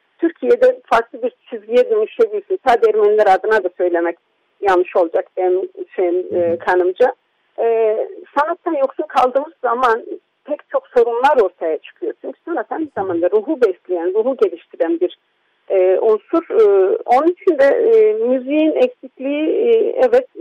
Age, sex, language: 50-69, female, Turkish